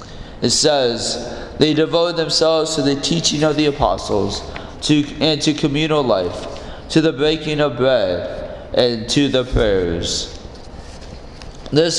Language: English